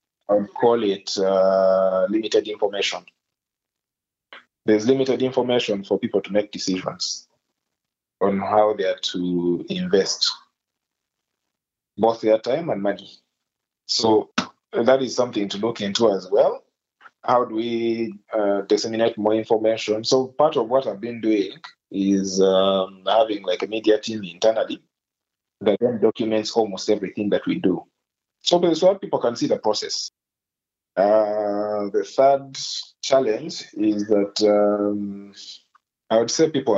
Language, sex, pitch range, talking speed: English, male, 100-120 Hz, 135 wpm